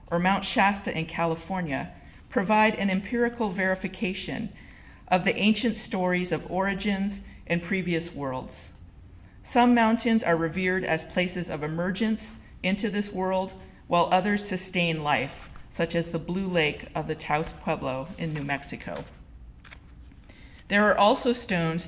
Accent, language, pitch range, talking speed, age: American, English, 160-195 Hz, 135 wpm, 40-59